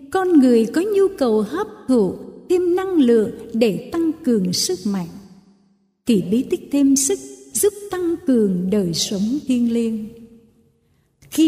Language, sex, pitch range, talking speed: Vietnamese, female, 205-295 Hz, 145 wpm